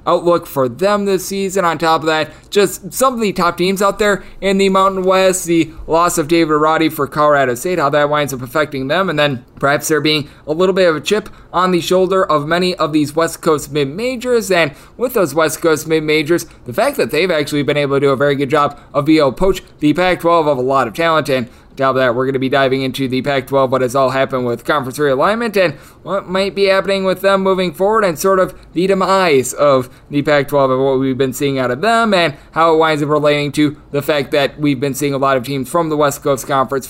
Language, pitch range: English, 140-185 Hz